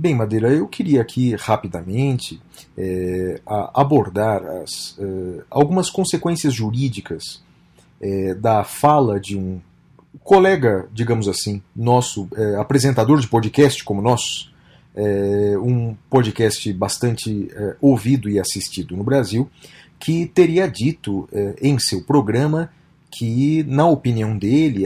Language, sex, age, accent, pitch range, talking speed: Portuguese, male, 40-59, Brazilian, 100-140 Hz, 120 wpm